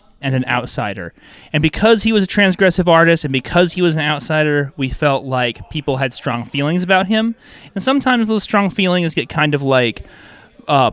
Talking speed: 190 wpm